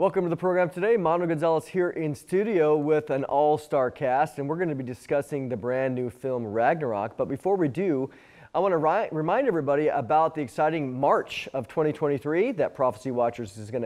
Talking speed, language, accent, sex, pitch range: 200 wpm, English, American, male, 130-165 Hz